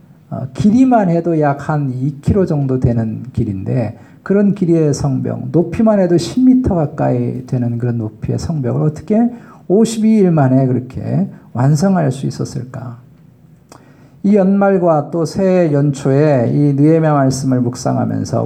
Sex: male